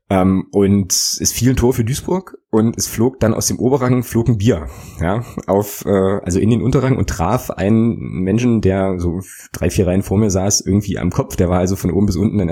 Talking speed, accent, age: 230 wpm, German, 20-39